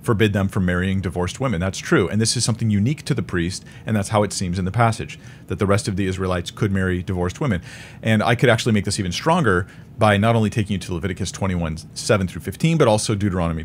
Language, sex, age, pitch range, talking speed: English, male, 40-59, 95-130 Hz, 245 wpm